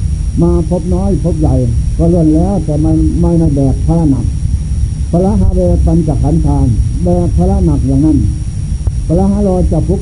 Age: 60-79